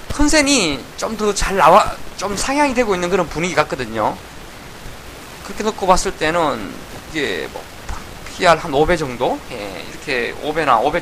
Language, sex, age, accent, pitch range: Korean, male, 20-39, native, 155-215 Hz